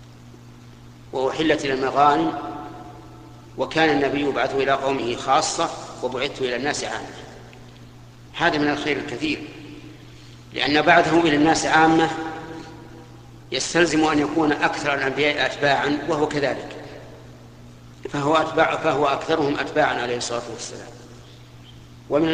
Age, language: 50-69, Arabic